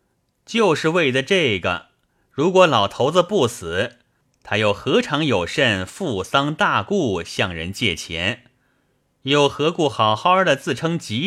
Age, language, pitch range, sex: 30-49, Chinese, 105-155 Hz, male